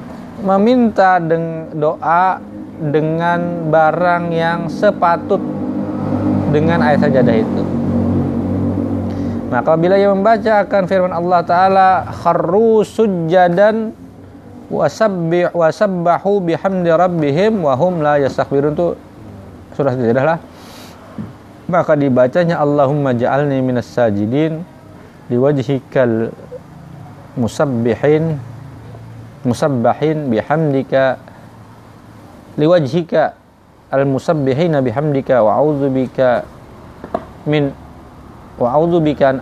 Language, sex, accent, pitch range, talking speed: Indonesian, male, native, 125-175 Hz, 60 wpm